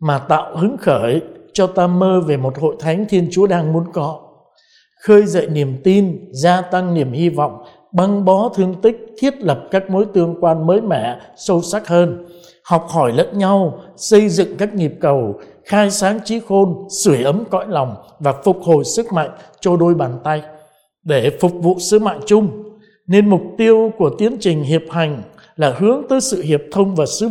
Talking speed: 195 wpm